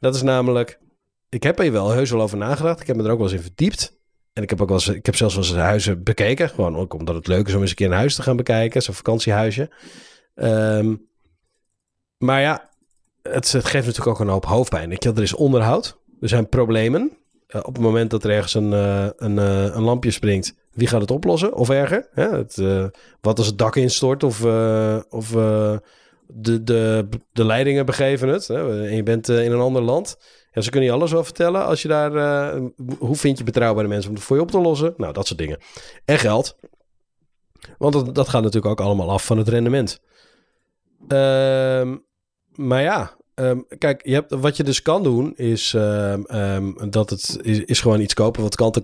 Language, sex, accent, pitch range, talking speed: Dutch, male, Dutch, 105-130 Hz, 220 wpm